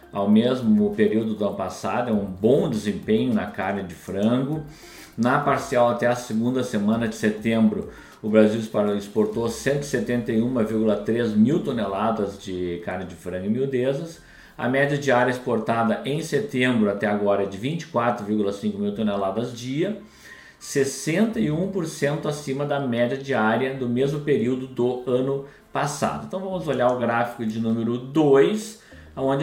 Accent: Brazilian